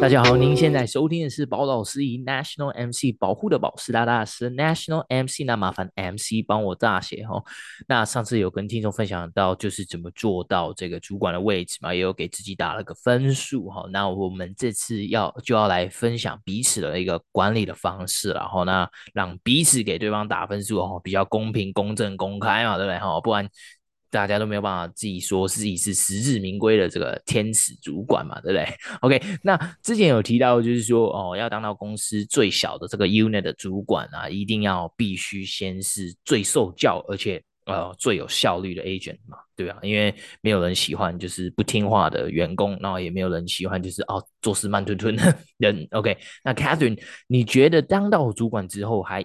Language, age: Chinese, 20-39